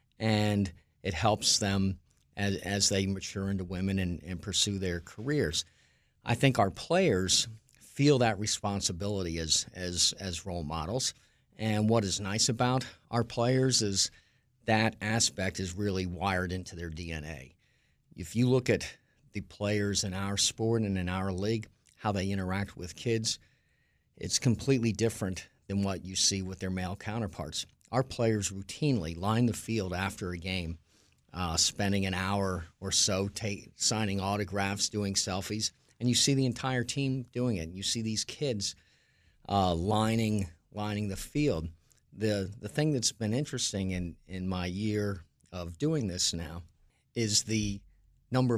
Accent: American